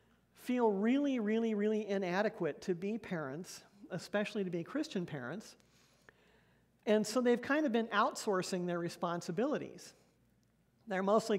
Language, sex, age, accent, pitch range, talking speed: English, male, 50-69, American, 180-220 Hz, 125 wpm